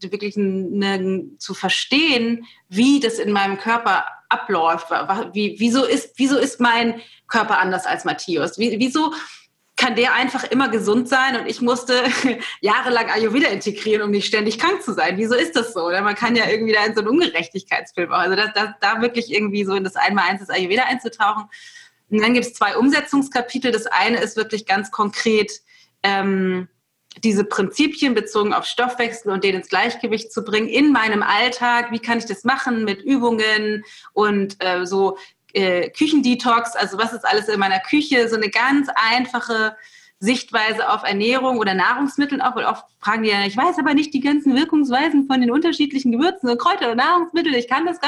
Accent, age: German, 30-49